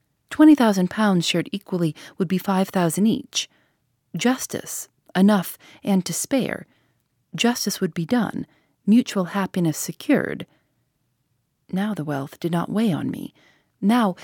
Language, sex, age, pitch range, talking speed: English, female, 40-59, 160-210 Hz, 130 wpm